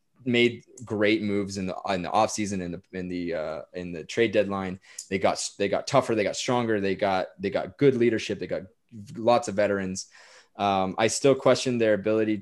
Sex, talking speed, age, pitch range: male, 205 wpm, 20-39, 90-110 Hz